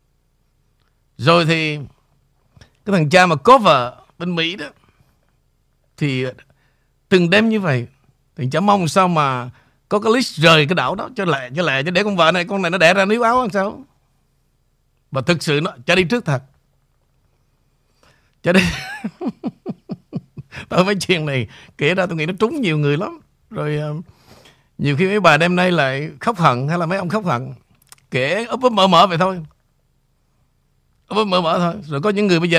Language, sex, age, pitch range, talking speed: Vietnamese, male, 50-69, 140-200 Hz, 180 wpm